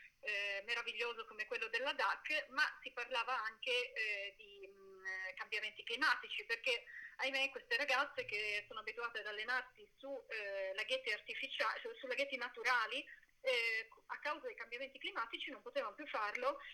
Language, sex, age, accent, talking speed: Italian, female, 30-49, native, 135 wpm